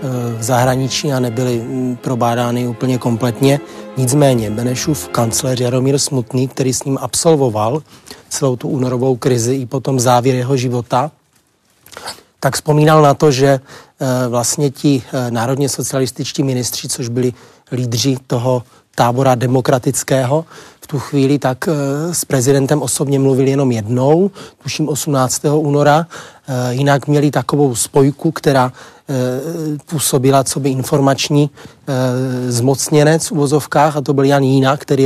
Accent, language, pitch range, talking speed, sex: native, Czech, 125-145 Hz, 125 wpm, male